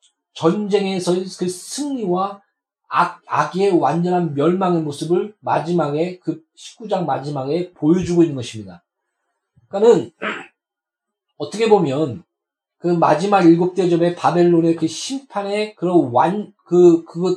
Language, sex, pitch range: Korean, male, 165-210 Hz